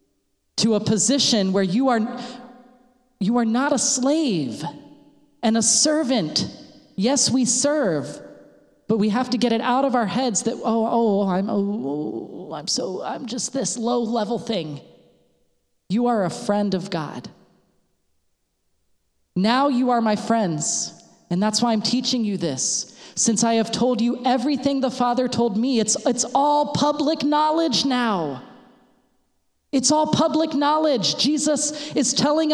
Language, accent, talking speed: English, American, 150 wpm